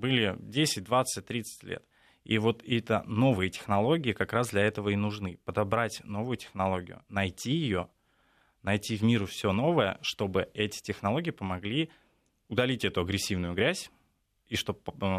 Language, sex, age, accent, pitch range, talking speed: Russian, male, 20-39, native, 100-120 Hz, 140 wpm